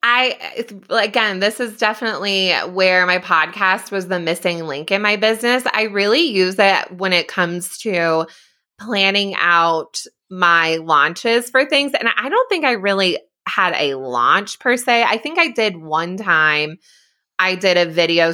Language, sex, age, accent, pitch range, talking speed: English, female, 20-39, American, 170-225 Hz, 165 wpm